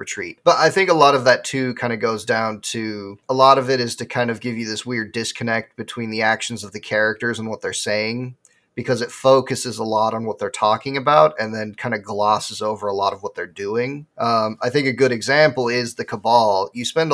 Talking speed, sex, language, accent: 245 wpm, male, English, American